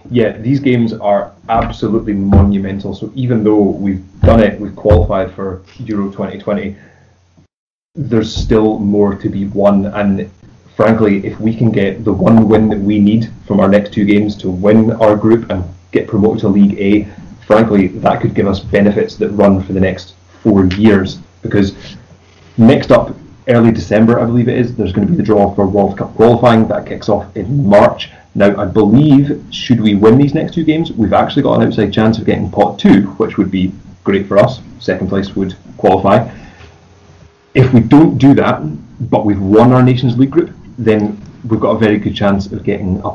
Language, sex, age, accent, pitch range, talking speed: English, male, 30-49, British, 100-110 Hz, 195 wpm